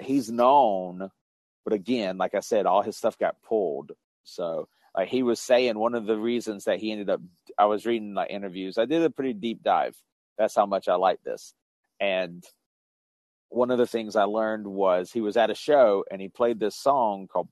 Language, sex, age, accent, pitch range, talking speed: English, male, 30-49, American, 95-115 Hz, 205 wpm